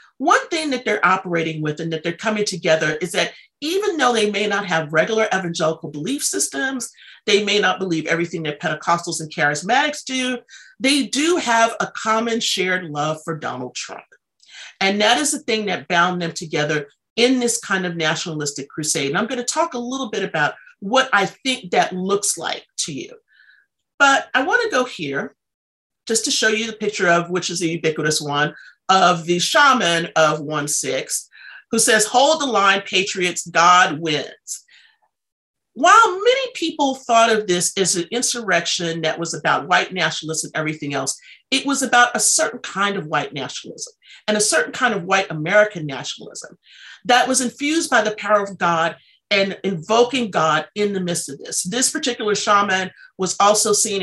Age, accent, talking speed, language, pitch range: 40-59, American, 180 wpm, English, 165-240 Hz